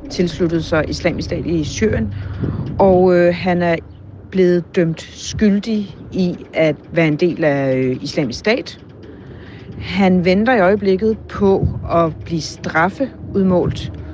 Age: 40-59